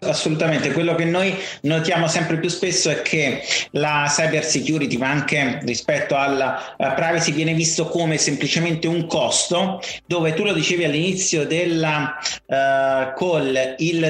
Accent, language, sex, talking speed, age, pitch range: native, Italian, male, 135 wpm, 30-49, 155-190 Hz